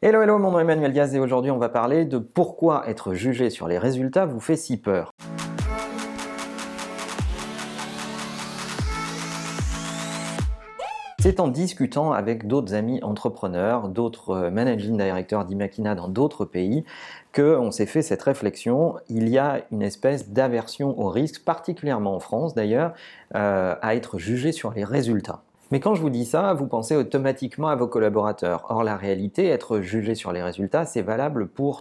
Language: French